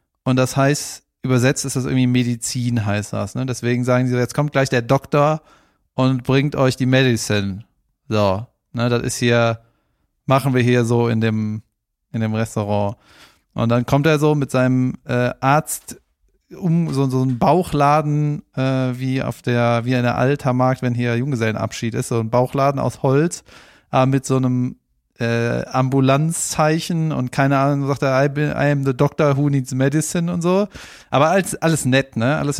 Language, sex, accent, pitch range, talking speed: German, male, German, 120-145 Hz, 180 wpm